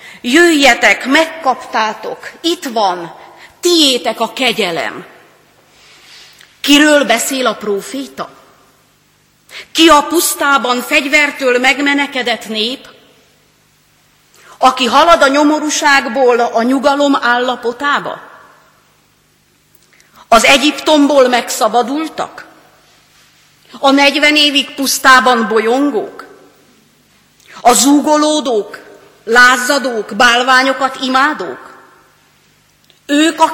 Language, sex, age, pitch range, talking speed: Hungarian, female, 40-59, 240-290 Hz, 70 wpm